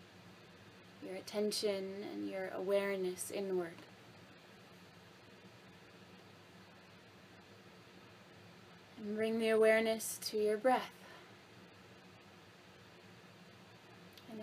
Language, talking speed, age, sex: English, 60 wpm, 20-39, female